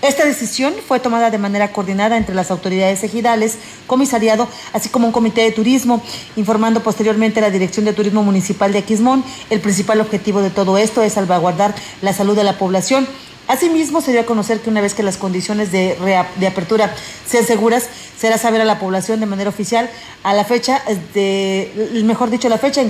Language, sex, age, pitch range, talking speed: Spanish, female, 40-59, 200-235 Hz, 195 wpm